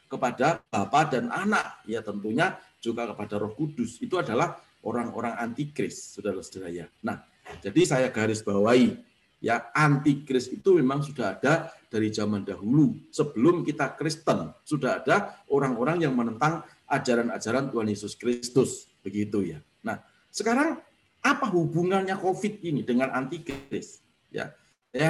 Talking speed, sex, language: 135 wpm, male, Indonesian